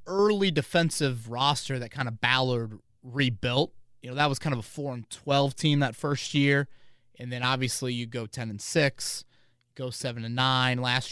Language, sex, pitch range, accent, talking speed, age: English, male, 120-140 Hz, American, 190 wpm, 30-49